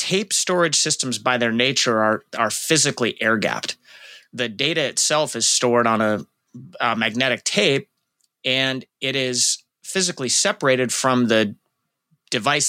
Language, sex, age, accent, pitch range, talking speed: English, male, 30-49, American, 110-140 Hz, 130 wpm